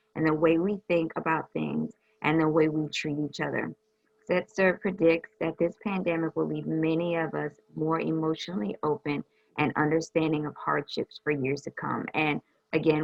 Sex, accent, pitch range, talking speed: female, American, 155-175 Hz, 170 wpm